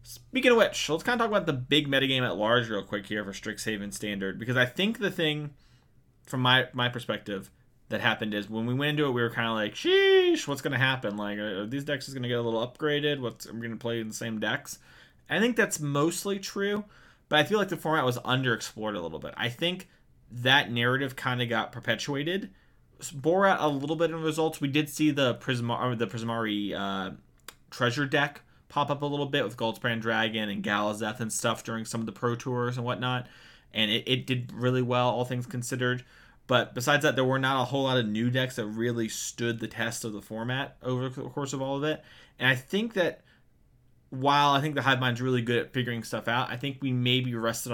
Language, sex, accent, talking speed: English, male, American, 235 wpm